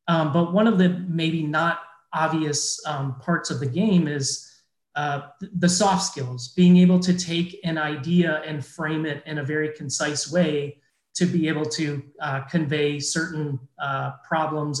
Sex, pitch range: male, 150-180 Hz